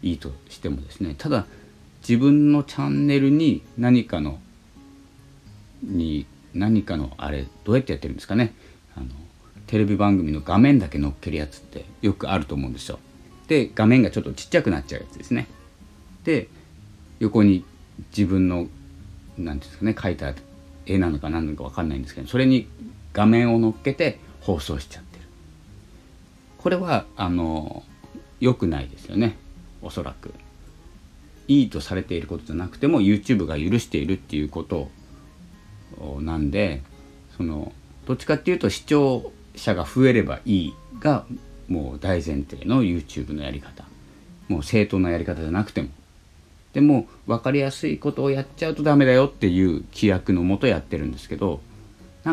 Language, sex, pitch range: Japanese, male, 75-110 Hz